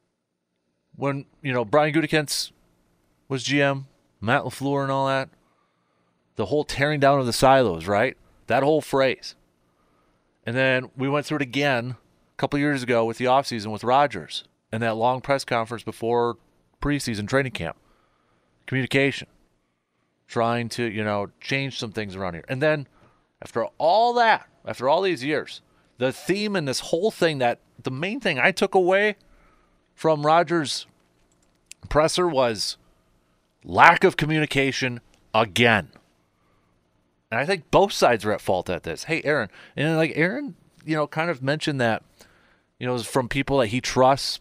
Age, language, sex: 30-49, English, male